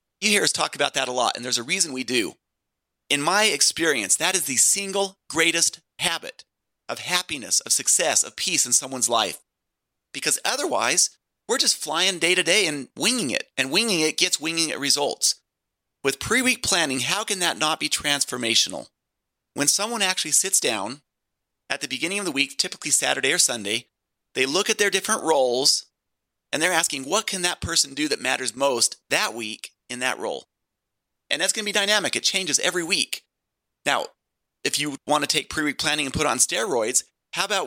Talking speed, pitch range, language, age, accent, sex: 190 wpm, 145-185 Hz, English, 30-49, American, male